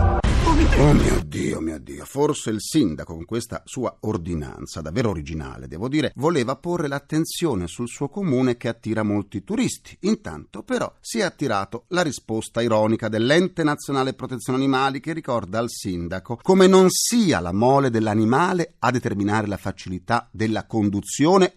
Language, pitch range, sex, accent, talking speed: Italian, 110-170 Hz, male, native, 150 wpm